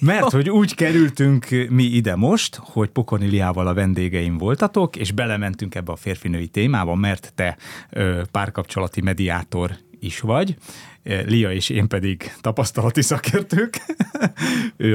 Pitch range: 95-125 Hz